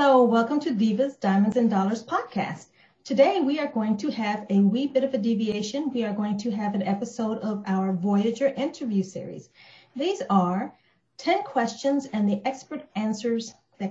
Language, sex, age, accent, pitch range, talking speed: English, female, 40-59, American, 200-260 Hz, 175 wpm